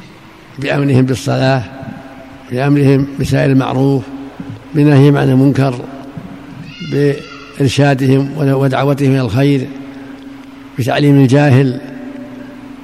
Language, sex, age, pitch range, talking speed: Arabic, male, 60-79, 135-155 Hz, 65 wpm